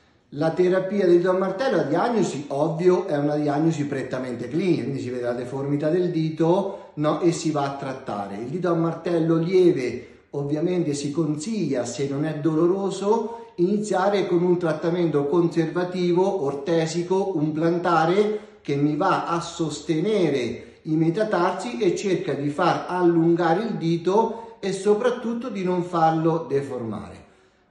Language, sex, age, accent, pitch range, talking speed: Italian, male, 40-59, native, 140-180 Hz, 145 wpm